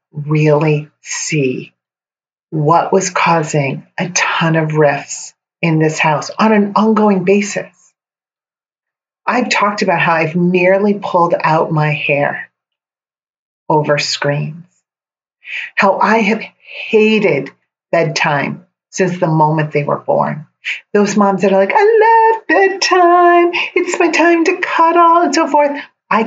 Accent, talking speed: American, 130 wpm